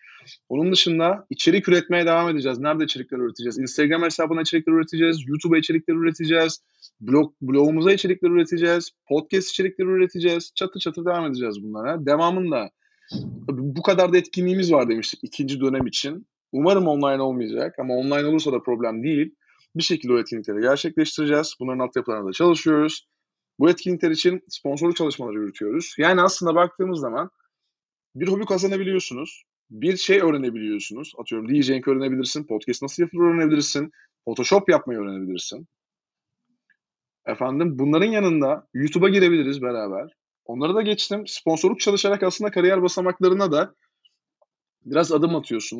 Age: 30-49